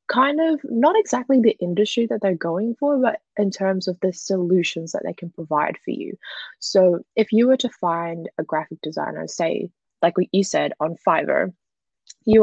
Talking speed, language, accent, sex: 190 wpm, English, Australian, female